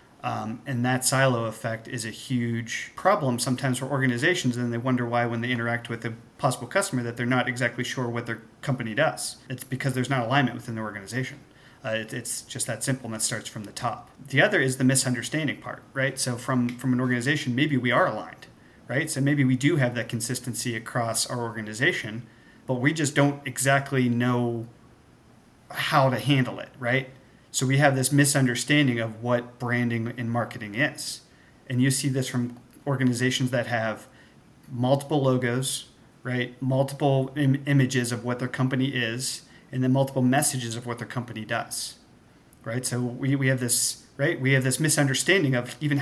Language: English